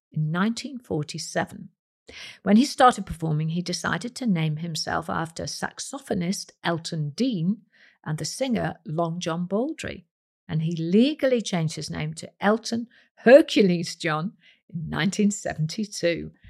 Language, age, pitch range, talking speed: English, 50-69, 165-230 Hz, 120 wpm